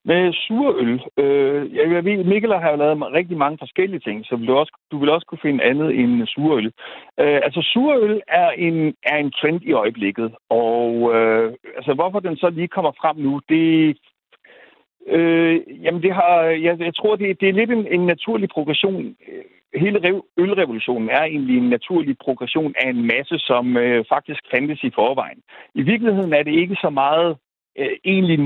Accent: native